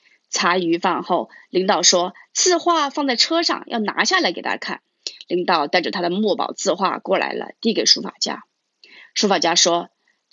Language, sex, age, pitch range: Chinese, female, 30-49, 210-335 Hz